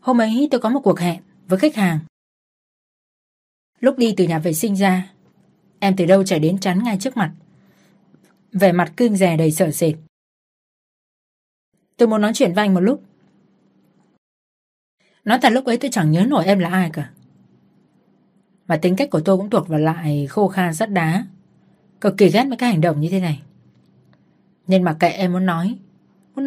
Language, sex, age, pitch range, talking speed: Vietnamese, female, 20-39, 160-205 Hz, 190 wpm